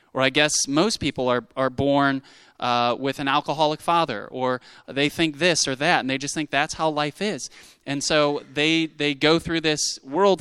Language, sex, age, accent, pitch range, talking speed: English, male, 20-39, American, 130-160 Hz, 200 wpm